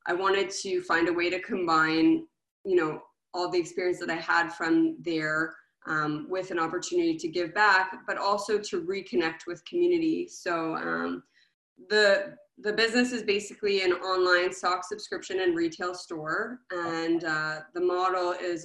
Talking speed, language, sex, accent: 160 wpm, English, female, American